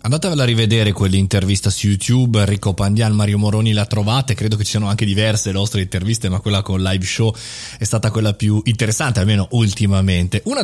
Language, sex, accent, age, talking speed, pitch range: Italian, male, native, 20-39, 190 wpm, 105-130 Hz